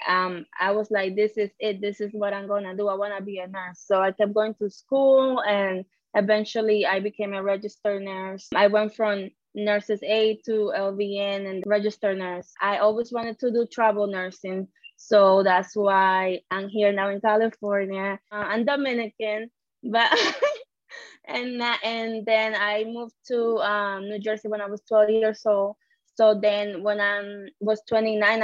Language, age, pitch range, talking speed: English, 20-39, 200-225 Hz, 175 wpm